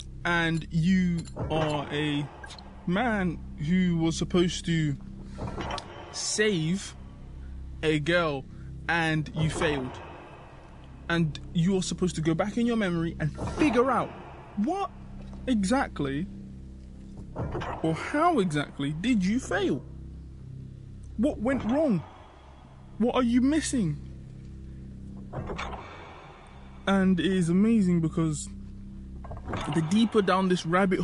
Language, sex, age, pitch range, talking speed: English, male, 20-39, 140-215 Hz, 100 wpm